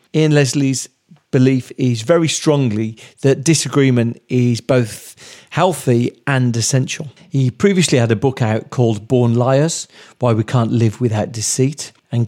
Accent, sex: British, male